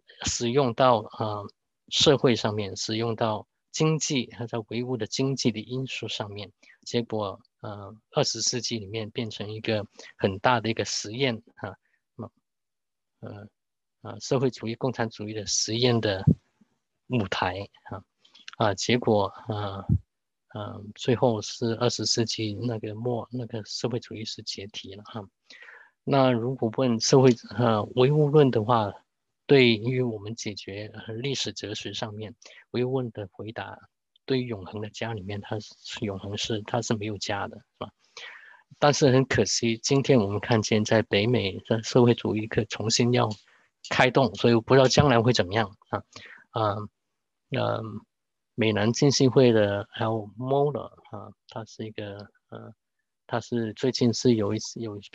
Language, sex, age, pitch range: English, male, 20-39, 105-125 Hz